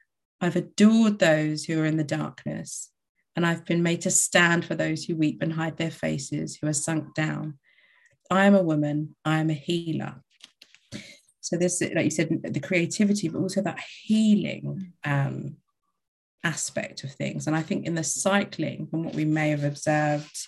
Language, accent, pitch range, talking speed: English, British, 140-165 Hz, 175 wpm